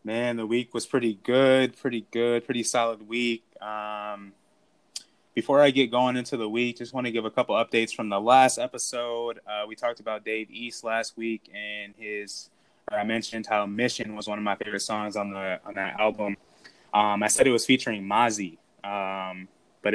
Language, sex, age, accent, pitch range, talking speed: English, male, 20-39, American, 100-120 Hz, 195 wpm